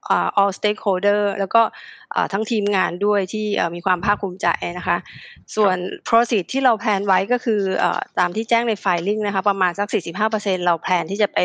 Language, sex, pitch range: Thai, female, 185-220 Hz